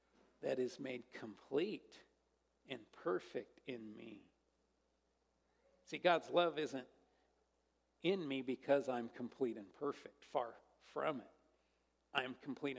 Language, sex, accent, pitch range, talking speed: English, male, American, 140-220 Hz, 115 wpm